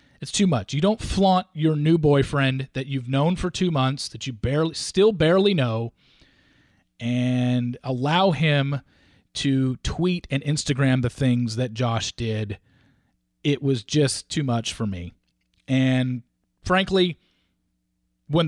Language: English